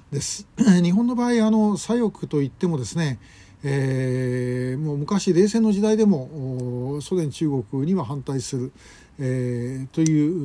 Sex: male